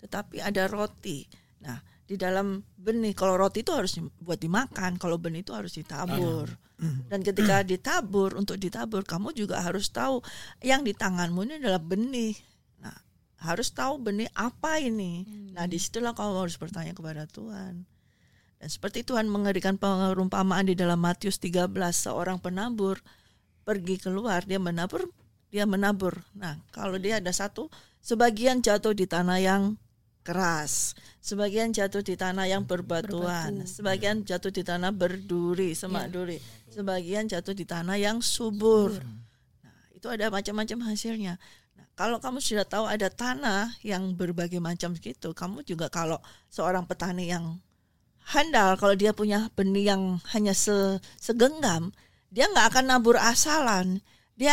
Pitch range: 175-215 Hz